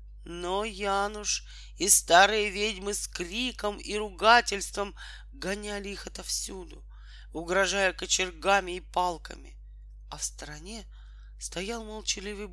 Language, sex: Russian, male